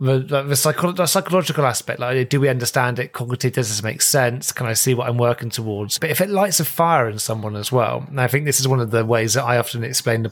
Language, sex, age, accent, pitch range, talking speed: English, male, 30-49, British, 120-145 Hz, 265 wpm